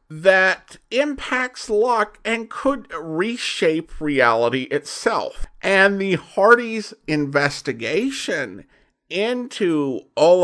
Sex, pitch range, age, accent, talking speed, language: male, 135-220 Hz, 50-69, American, 80 wpm, English